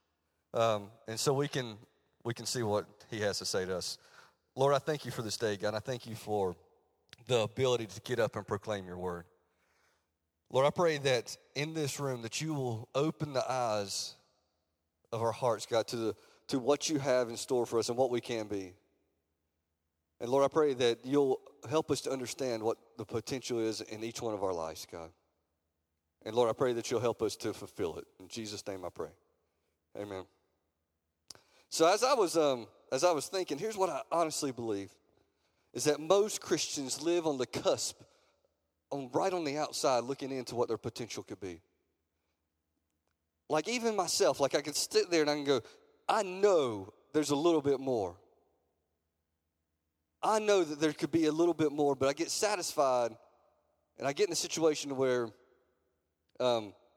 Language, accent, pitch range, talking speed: English, American, 95-145 Hz, 190 wpm